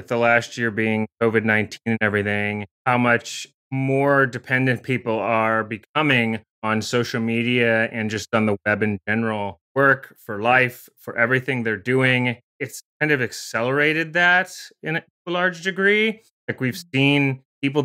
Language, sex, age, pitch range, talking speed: English, male, 30-49, 115-145 Hz, 150 wpm